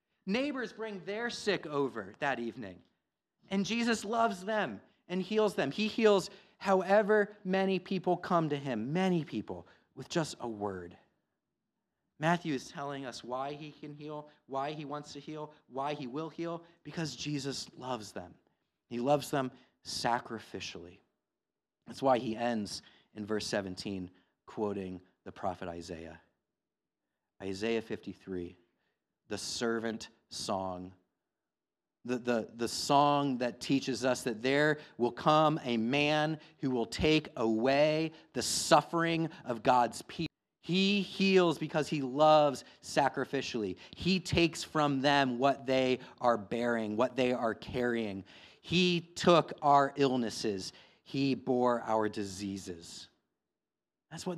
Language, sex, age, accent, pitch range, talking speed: English, male, 30-49, American, 115-165 Hz, 130 wpm